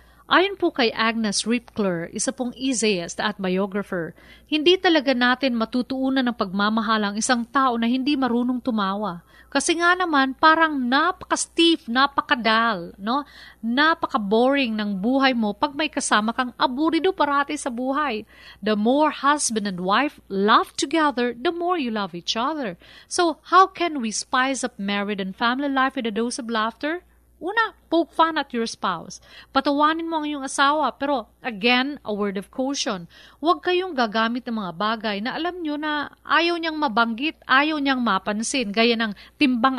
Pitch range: 230-300 Hz